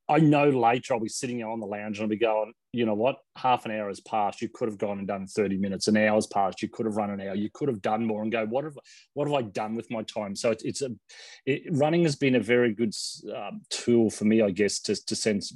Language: English